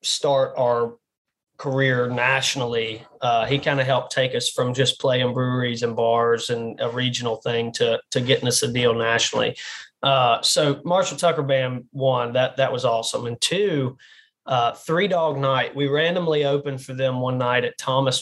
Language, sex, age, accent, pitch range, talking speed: English, male, 20-39, American, 125-155 Hz, 175 wpm